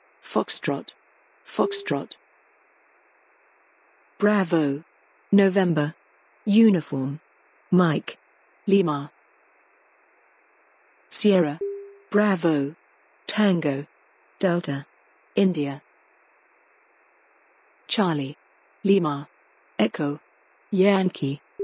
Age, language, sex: 50-69, English, female